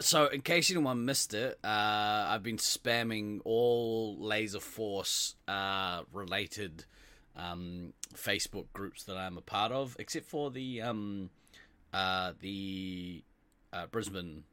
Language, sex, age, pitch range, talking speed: English, male, 20-39, 95-120 Hz, 130 wpm